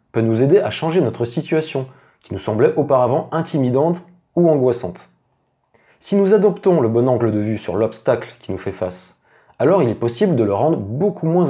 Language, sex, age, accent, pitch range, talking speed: French, male, 30-49, French, 110-150 Hz, 195 wpm